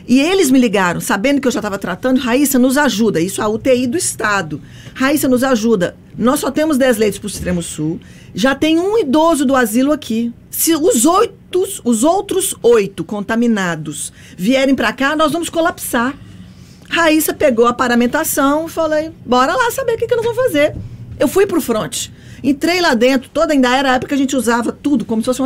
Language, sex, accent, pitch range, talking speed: Portuguese, female, Brazilian, 215-285 Hz, 200 wpm